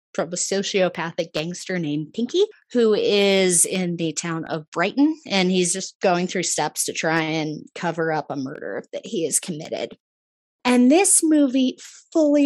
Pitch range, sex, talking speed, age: 175-240 Hz, female, 165 wpm, 20-39